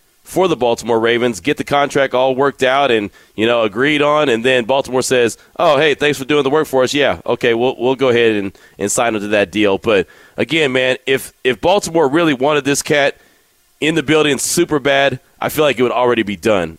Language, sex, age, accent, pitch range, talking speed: English, male, 30-49, American, 125-155 Hz, 230 wpm